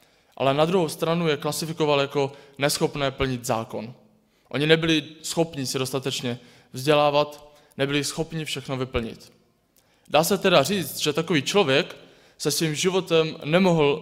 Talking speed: 135 wpm